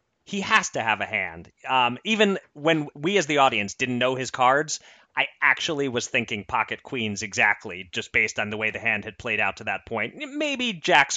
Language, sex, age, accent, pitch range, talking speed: English, male, 30-49, American, 105-140 Hz, 210 wpm